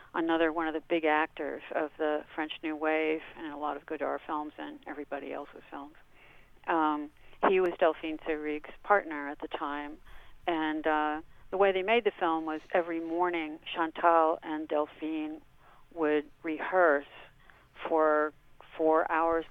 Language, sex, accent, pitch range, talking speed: English, female, American, 155-170 Hz, 150 wpm